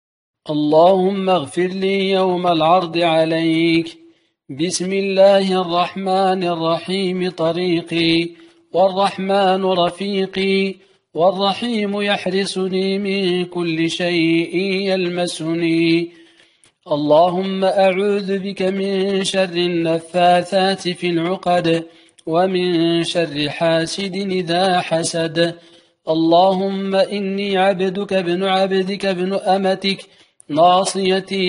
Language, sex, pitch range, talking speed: Arabic, male, 170-190 Hz, 75 wpm